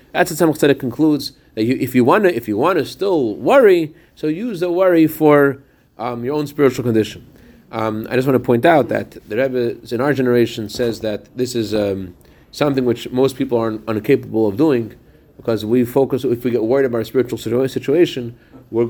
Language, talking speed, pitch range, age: English, 205 wpm, 110-135 Hz, 30-49